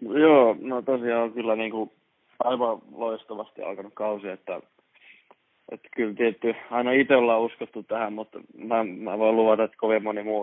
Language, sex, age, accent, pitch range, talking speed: Finnish, male, 20-39, native, 105-115 Hz, 155 wpm